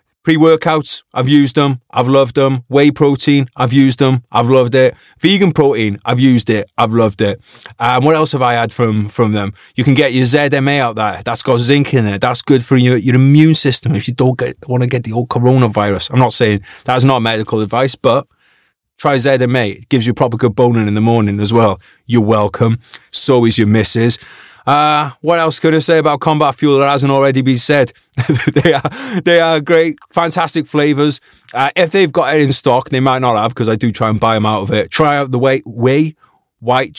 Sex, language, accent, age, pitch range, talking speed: male, English, British, 30-49, 115-145 Hz, 220 wpm